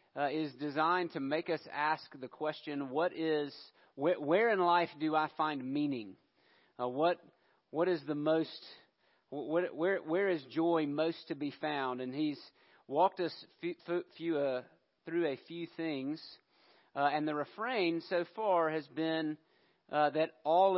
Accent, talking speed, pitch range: American, 170 wpm, 145-170 Hz